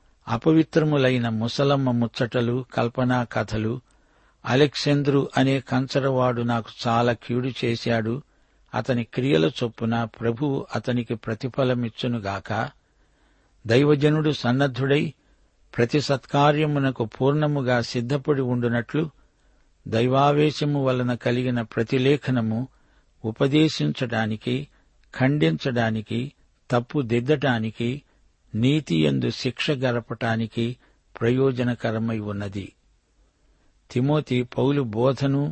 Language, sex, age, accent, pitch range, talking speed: Telugu, male, 60-79, native, 120-140 Hz, 65 wpm